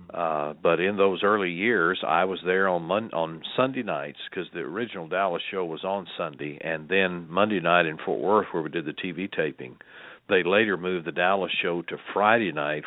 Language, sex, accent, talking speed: English, male, American, 205 wpm